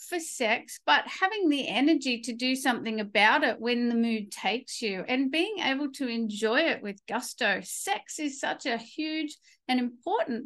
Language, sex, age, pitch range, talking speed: English, female, 50-69, 225-290 Hz, 180 wpm